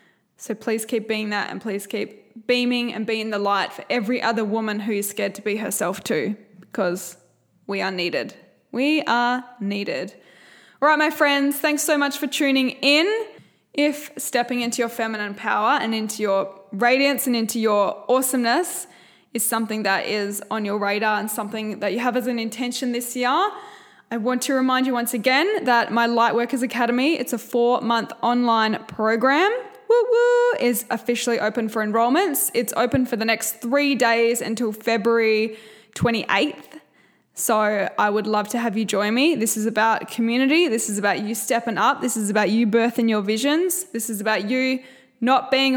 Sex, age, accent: female, 10-29, Australian